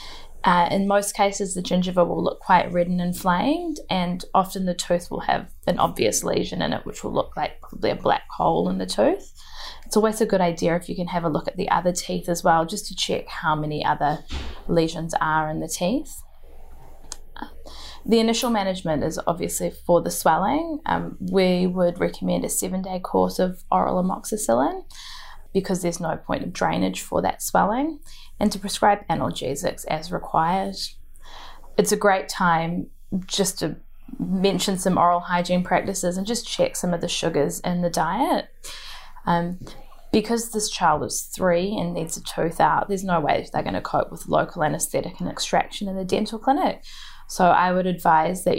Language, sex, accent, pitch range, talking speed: English, female, Australian, 175-205 Hz, 185 wpm